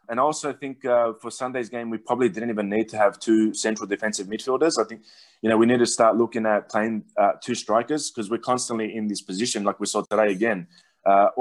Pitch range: 100-115 Hz